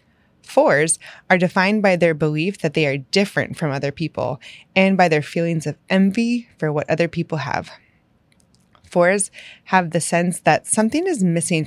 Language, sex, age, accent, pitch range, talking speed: English, female, 20-39, American, 150-190 Hz, 165 wpm